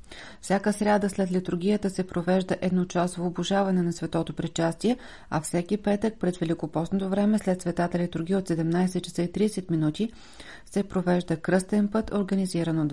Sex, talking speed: female, 150 wpm